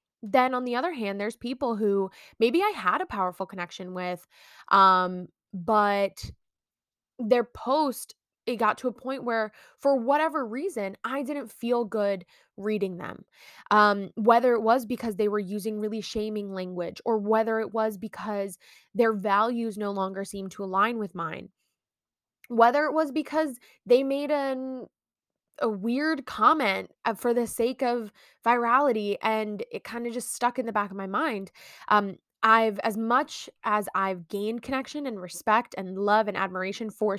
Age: 20-39